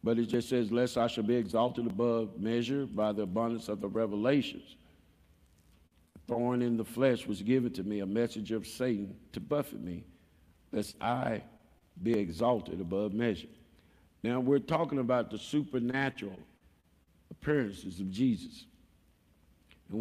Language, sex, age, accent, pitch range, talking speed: English, male, 50-69, American, 90-130 Hz, 145 wpm